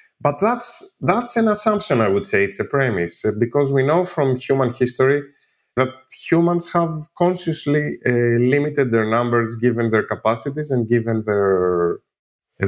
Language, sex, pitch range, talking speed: English, male, 105-145 Hz, 155 wpm